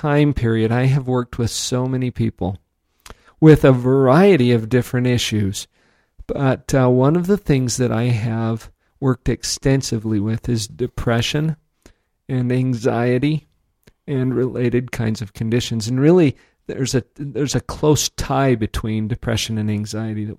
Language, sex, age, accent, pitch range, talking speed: English, male, 50-69, American, 115-150 Hz, 140 wpm